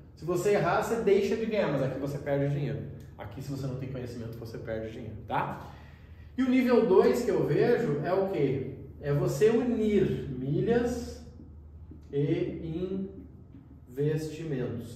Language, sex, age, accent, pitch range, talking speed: Portuguese, male, 20-39, Brazilian, 130-190 Hz, 155 wpm